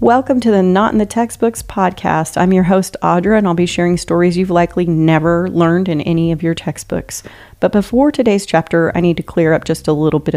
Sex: female